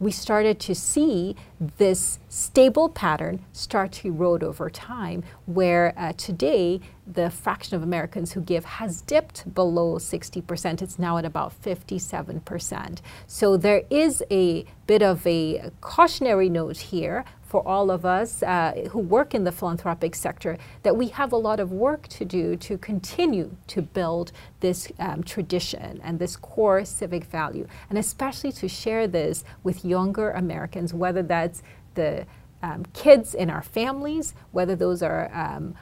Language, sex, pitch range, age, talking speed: English, female, 170-210 Hz, 40-59, 155 wpm